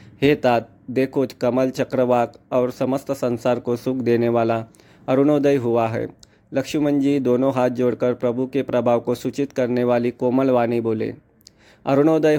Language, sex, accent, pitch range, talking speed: Hindi, male, native, 120-135 Hz, 150 wpm